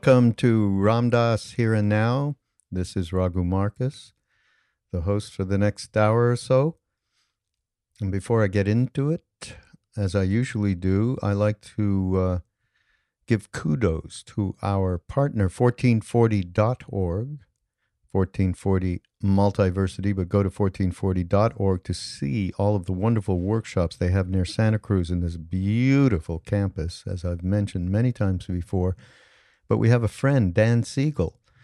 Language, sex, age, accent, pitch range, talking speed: English, male, 50-69, American, 95-115 Hz, 140 wpm